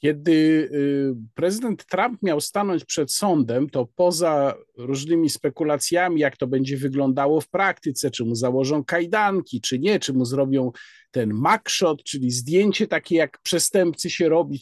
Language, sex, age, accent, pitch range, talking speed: Polish, male, 50-69, native, 155-210 Hz, 145 wpm